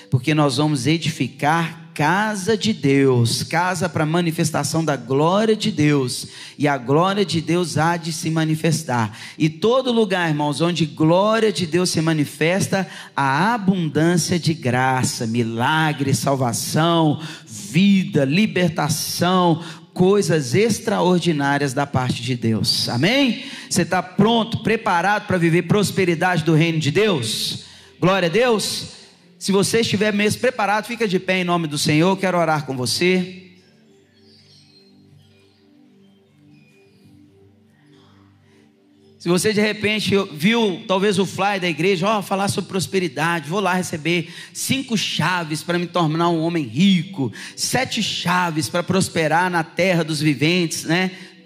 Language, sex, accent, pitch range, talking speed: Portuguese, male, Brazilian, 150-185 Hz, 135 wpm